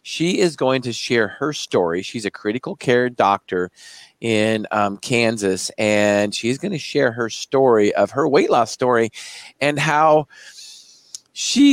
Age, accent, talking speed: 40-59, American, 155 wpm